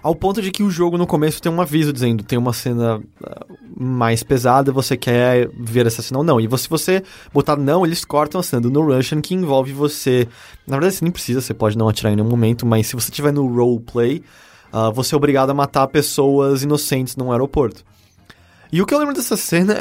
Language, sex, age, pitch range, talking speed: English, male, 20-39, 125-180 Hz, 220 wpm